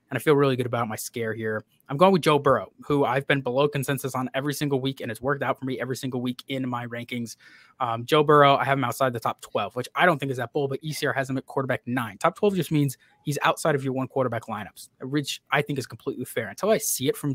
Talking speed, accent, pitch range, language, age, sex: 280 wpm, American, 120-145 Hz, English, 20-39, male